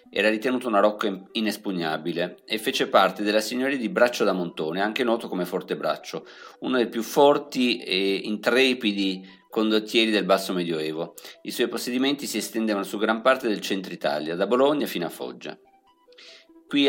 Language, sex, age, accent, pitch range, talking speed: Italian, male, 50-69, native, 100-130 Hz, 165 wpm